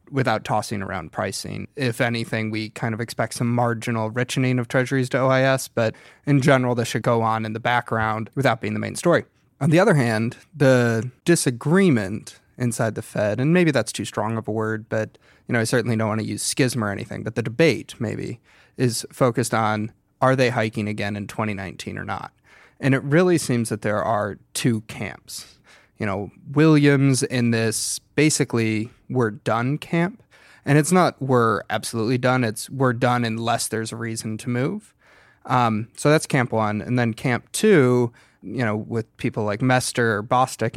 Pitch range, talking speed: 110-135 Hz, 185 wpm